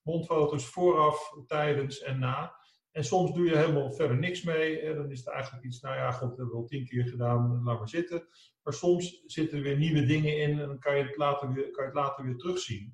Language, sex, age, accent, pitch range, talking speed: English, male, 50-69, Dutch, 125-160 Hz, 245 wpm